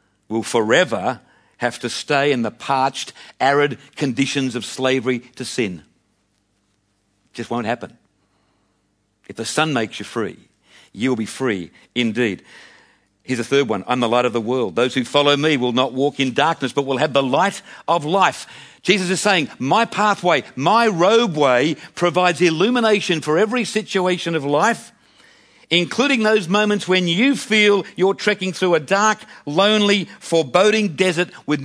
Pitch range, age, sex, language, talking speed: 115-185 Hz, 50-69, male, English, 155 wpm